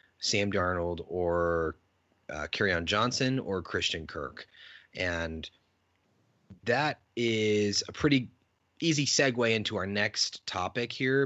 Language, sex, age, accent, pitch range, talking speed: English, male, 30-49, American, 90-115 Hz, 110 wpm